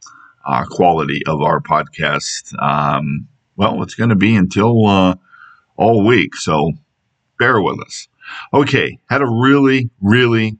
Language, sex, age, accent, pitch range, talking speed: English, male, 50-69, American, 80-100 Hz, 135 wpm